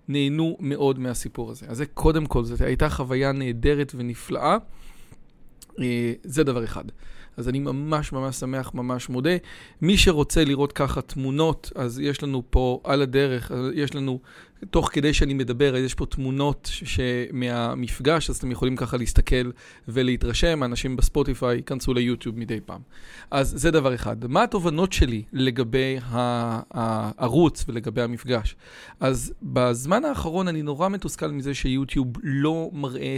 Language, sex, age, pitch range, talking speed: Hebrew, male, 40-59, 125-160 Hz, 145 wpm